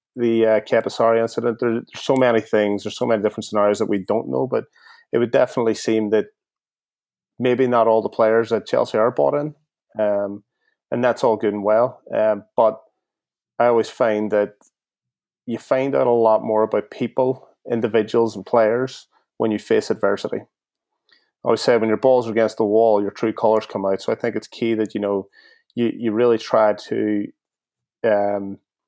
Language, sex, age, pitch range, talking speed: English, male, 30-49, 105-115 Hz, 190 wpm